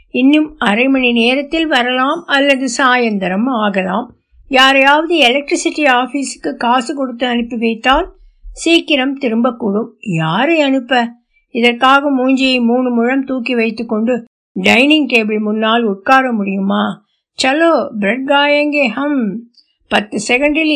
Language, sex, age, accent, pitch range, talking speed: Tamil, female, 60-79, native, 230-285 Hz, 105 wpm